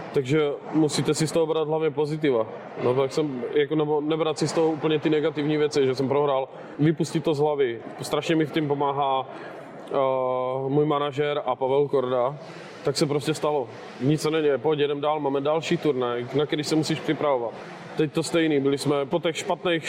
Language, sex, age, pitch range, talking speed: Czech, male, 20-39, 130-155 Hz, 195 wpm